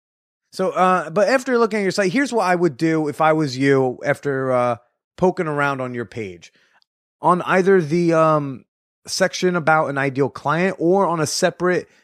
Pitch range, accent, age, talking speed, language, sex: 130-175 Hz, American, 30-49, 185 wpm, English, male